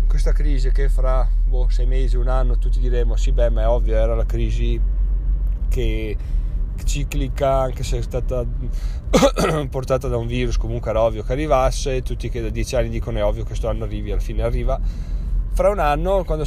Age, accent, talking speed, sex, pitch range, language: 20-39, native, 195 wpm, male, 105-130 Hz, Italian